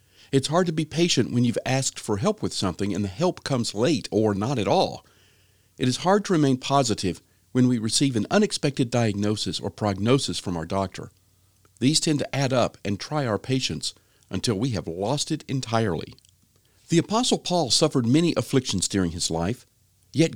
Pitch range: 100-145 Hz